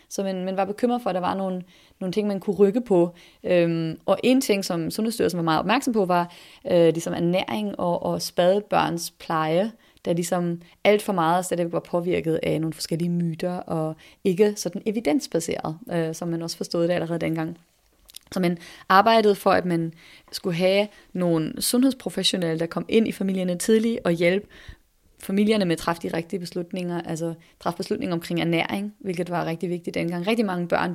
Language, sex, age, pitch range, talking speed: Danish, female, 30-49, 170-210 Hz, 180 wpm